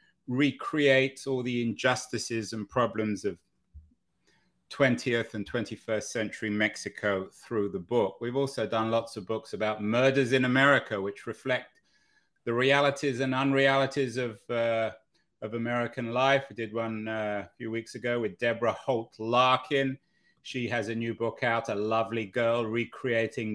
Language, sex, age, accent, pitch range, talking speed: English, male, 30-49, British, 110-130 Hz, 150 wpm